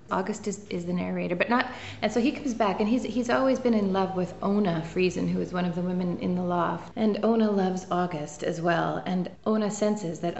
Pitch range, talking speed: 170-195 Hz, 235 wpm